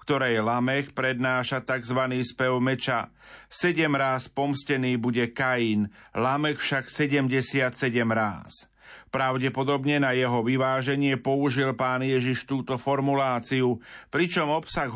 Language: Slovak